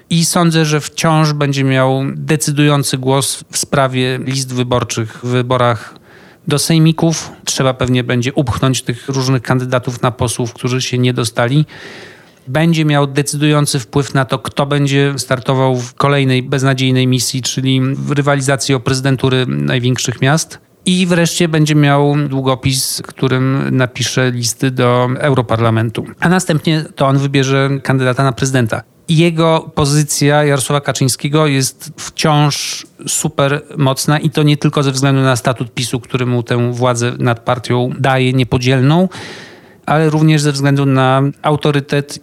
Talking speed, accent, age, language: 140 wpm, native, 40-59, Polish